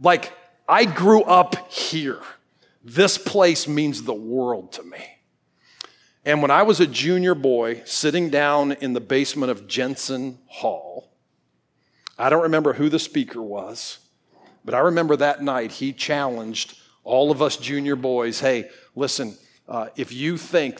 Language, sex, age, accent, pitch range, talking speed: English, male, 50-69, American, 120-155 Hz, 150 wpm